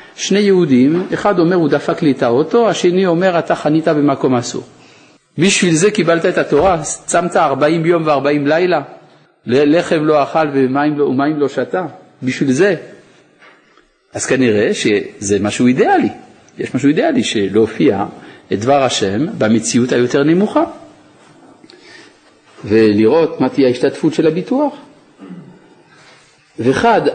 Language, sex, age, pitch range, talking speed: Hebrew, male, 50-69, 135-195 Hz, 125 wpm